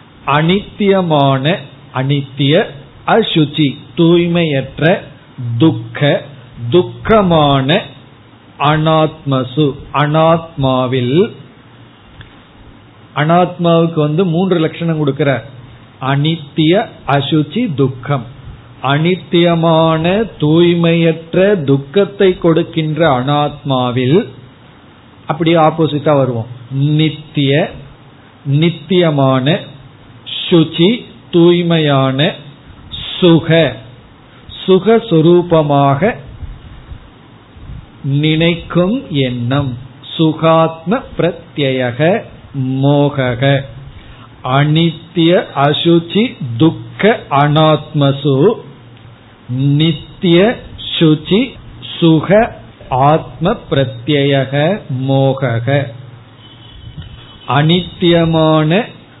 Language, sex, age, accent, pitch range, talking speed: Tamil, male, 50-69, native, 130-165 Hz, 45 wpm